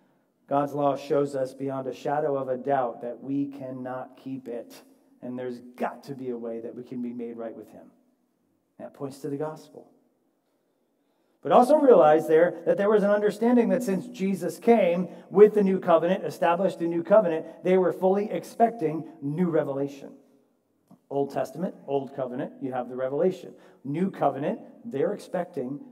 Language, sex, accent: English, male, American